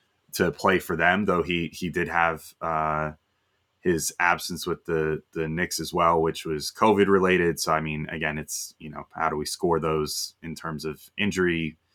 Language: English